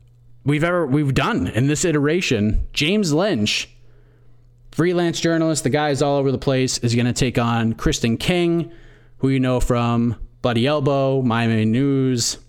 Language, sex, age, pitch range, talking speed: English, male, 30-49, 120-155 Hz, 150 wpm